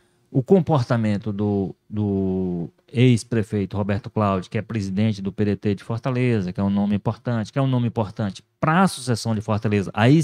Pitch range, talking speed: 105-135 Hz, 175 wpm